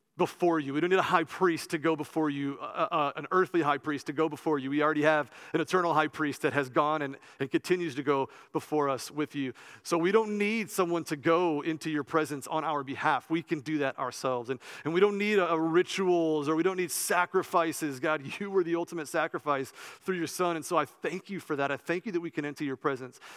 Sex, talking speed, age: male, 250 wpm, 40-59